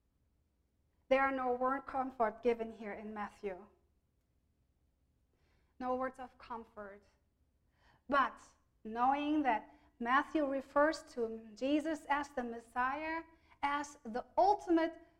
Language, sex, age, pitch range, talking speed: English, female, 40-59, 200-275 Hz, 105 wpm